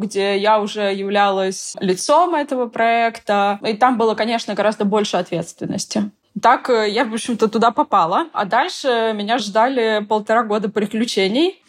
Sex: female